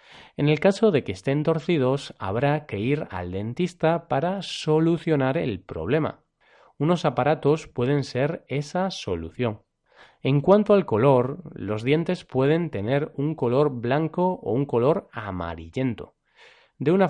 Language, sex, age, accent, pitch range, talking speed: Spanish, male, 30-49, Spanish, 110-160 Hz, 135 wpm